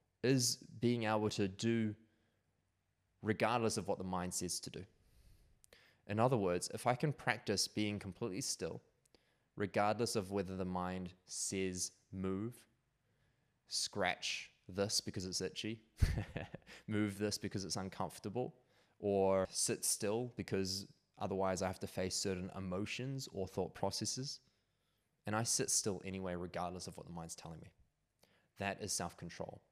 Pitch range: 95-110 Hz